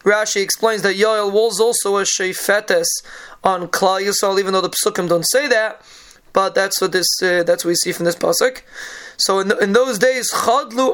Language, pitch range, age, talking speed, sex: English, 190-235 Hz, 20-39, 190 wpm, male